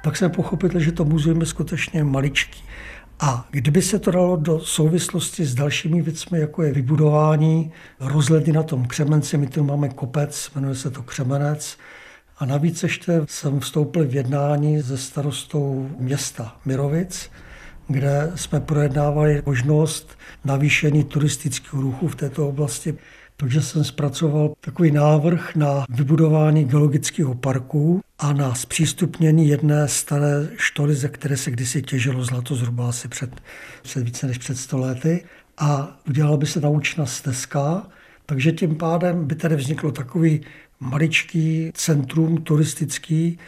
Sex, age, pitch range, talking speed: male, 60-79, 135-160 Hz, 140 wpm